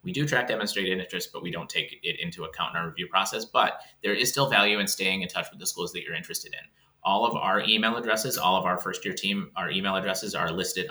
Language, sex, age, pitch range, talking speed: English, male, 30-49, 95-145 Hz, 260 wpm